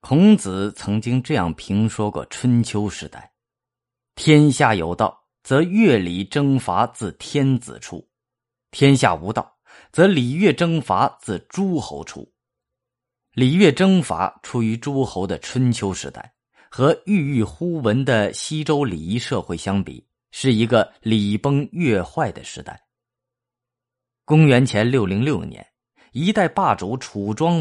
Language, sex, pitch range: Chinese, male, 105-140 Hz